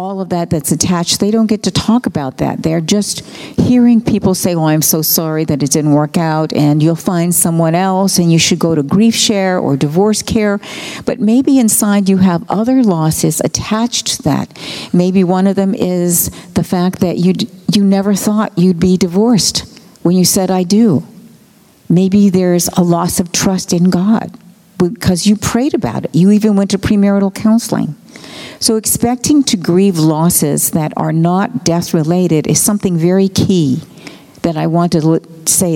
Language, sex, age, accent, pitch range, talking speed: English, female, 50-69, American, 165-205 Hz, 180 wpm